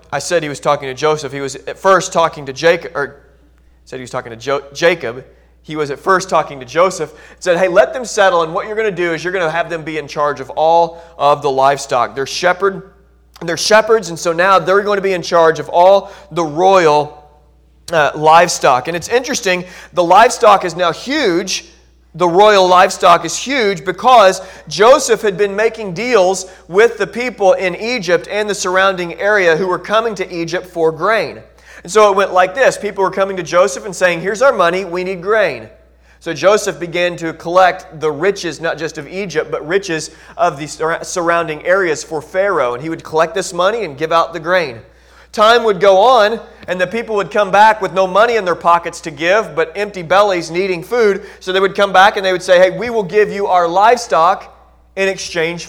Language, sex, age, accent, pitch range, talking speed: English, male, 40-59, American, 165-200 Hz, 215 wpm